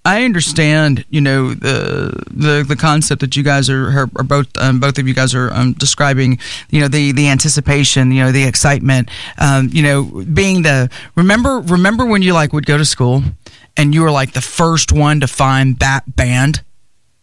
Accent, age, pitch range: American, 40-59, 130-155 Hz